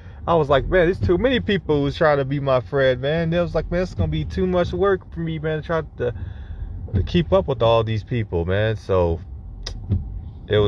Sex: male